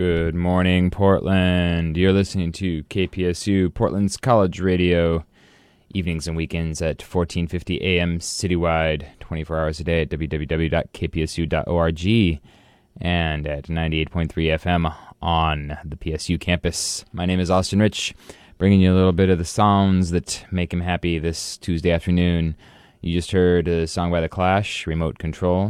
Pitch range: 80-95 Hz